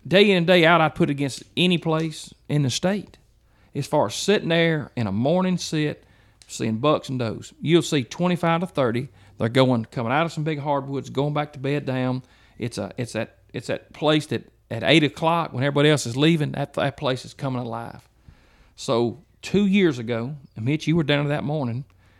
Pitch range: 120-150 Hz